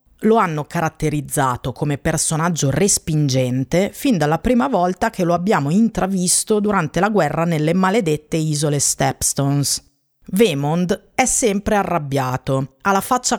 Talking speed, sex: 125 wpm, female